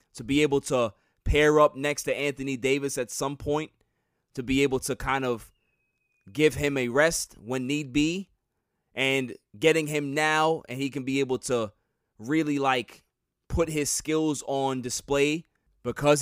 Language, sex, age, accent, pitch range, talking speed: English, male, 20-39, American, 125-155 Hz, 165 wpm